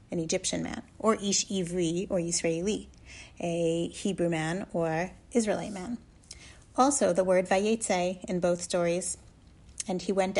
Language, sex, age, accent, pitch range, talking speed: English, female, 30-49, American, 170-215 Hz, 135 wpm